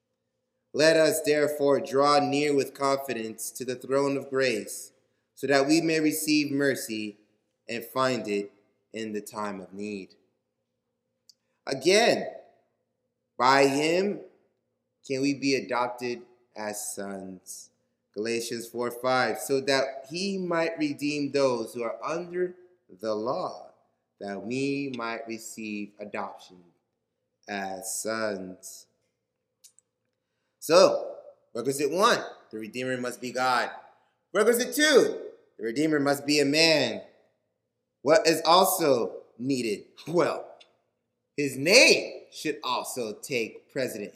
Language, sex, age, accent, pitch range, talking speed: English, male, 20-39, American, 115-165 Hz, 115 wpm